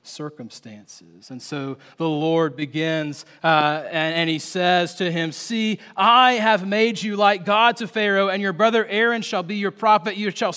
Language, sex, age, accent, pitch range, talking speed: English, male, 30-49, American, 180-235 Hz, 180 wpm